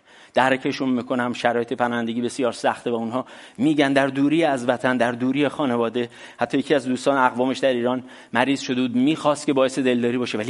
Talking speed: 175 wpm